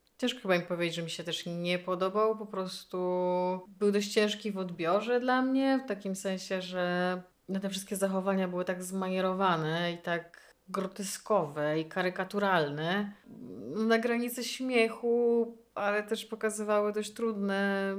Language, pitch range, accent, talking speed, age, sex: Polish, 170-200 Hz, native, 140 wpm, 30-49, female